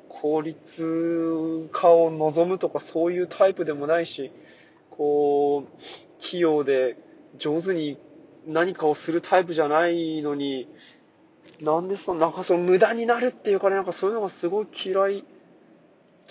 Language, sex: Japanese, male